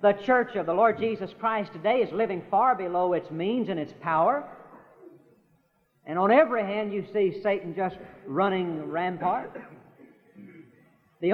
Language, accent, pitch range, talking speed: English, American, 185-230 Hz, 150 wpm